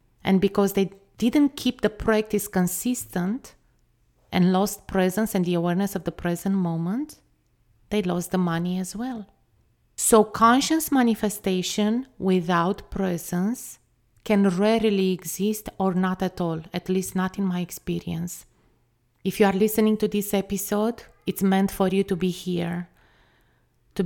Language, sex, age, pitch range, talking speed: English, female, 30-49, 175-205 Hz, 140 wpm